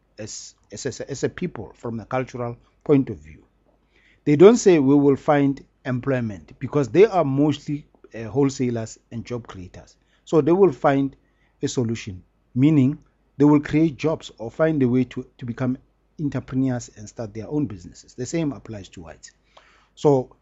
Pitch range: 115-145 Hz